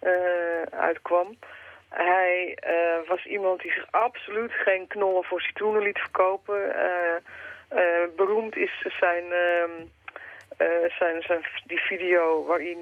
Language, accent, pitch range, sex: Dutch, Dutch, 165-195 Hz, female